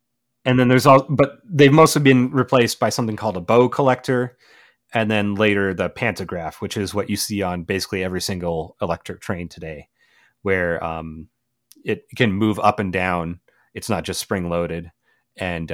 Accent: American